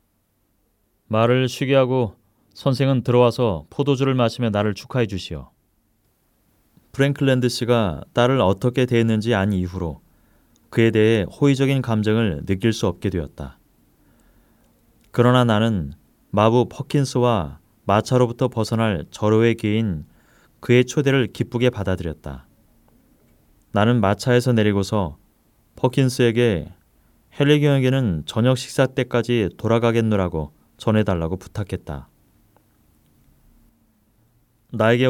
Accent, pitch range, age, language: native, 95-125 Hz, 30-49, Korean